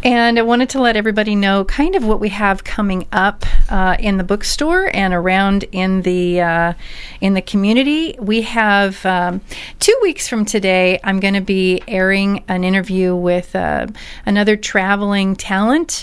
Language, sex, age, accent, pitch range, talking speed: English, female, 40-59, American, 180-215 Hz, 170 wpm